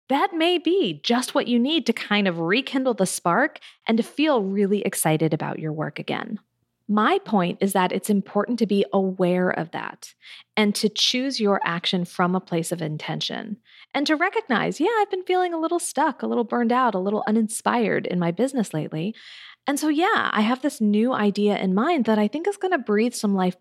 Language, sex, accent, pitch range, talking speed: English, female, American, 180-260 Hz, 210 wpm